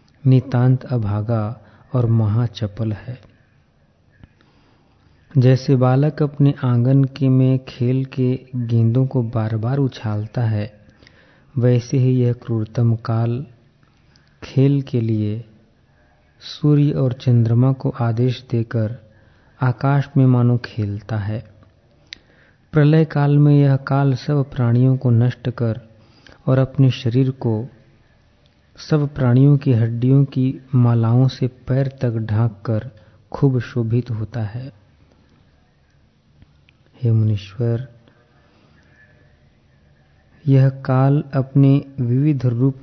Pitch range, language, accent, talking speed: 115-130 Hz, Hindi, native, 100 wpm